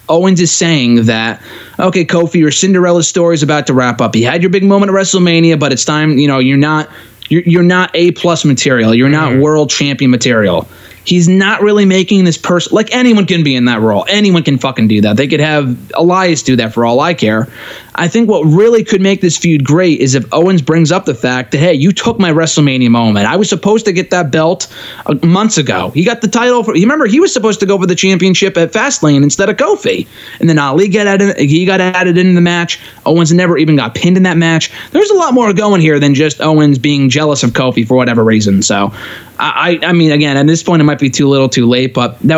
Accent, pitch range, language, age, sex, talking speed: American, 135-185 Hz, English, 20-39, male, 240 wpm